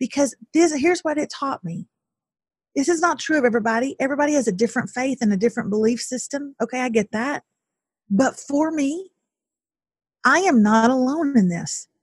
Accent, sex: American, female